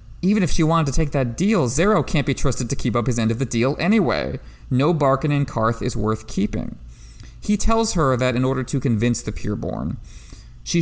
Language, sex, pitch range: English, male, 110-165 Hz